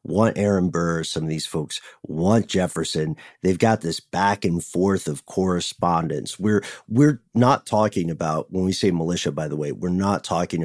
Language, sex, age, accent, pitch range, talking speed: English, male, 40-59, American, 90-140 Hz, 180 wpm